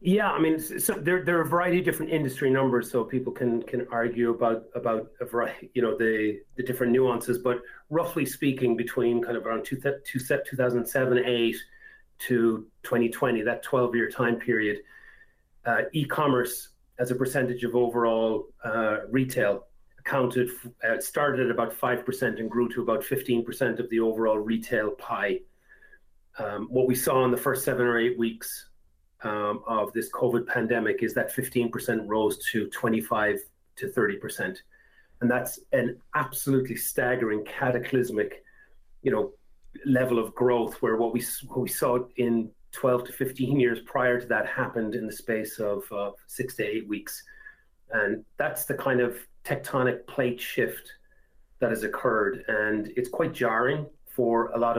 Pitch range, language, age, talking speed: 115-135 Hz, English, 40-59, 160 wpm